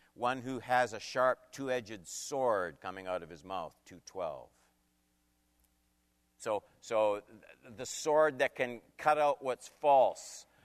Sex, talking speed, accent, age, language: male, 130 wpm, American, 50-69, English